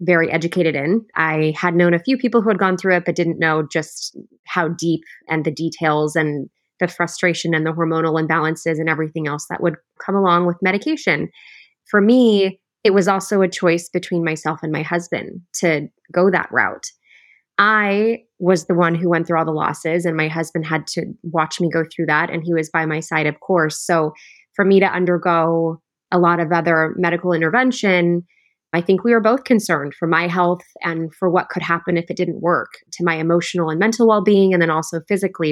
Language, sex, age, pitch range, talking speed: English, female, 20-39, 165-195 Hz, 205 wpm